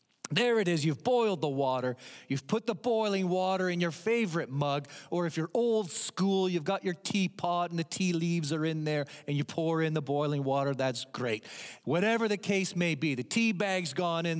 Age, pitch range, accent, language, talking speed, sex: 40-59, 145-195 Hz, American, English, 215 wpm, male